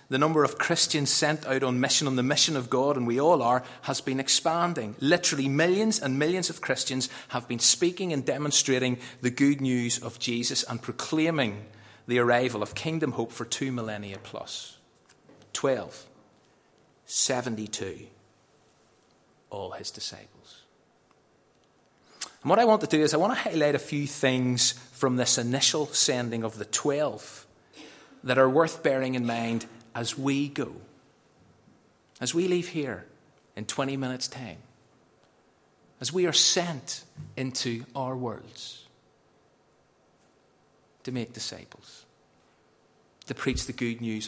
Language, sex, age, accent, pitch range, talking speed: English, male, 30-49, British, 115-145 Hz, 140 wpm